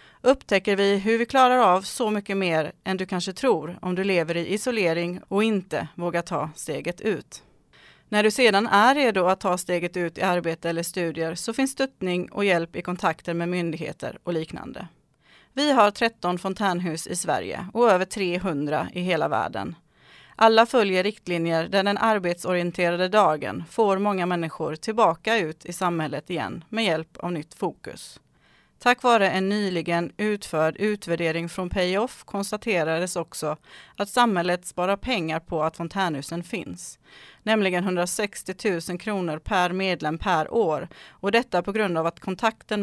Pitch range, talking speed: 170-205 Hz, 160 wpm